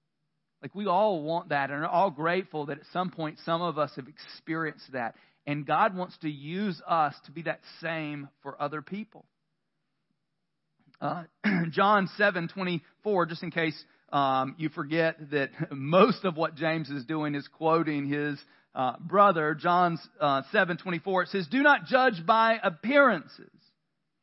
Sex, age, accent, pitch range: male, 40-59, American, 160-225 Hz